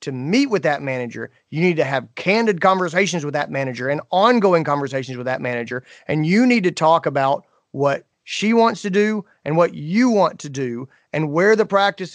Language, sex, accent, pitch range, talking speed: English, male, American, 135-170 Hz, 200 wpm